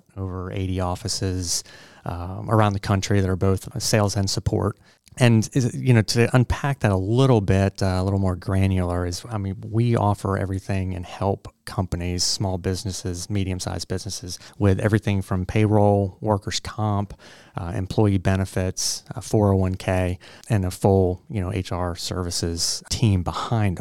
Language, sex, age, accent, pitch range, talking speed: English, male, 30-49, American, 95-110 Hz, 155 wpm